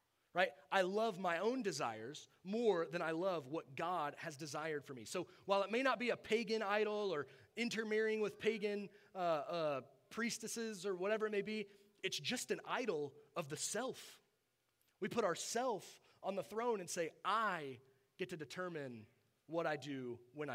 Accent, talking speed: American, 180 wpm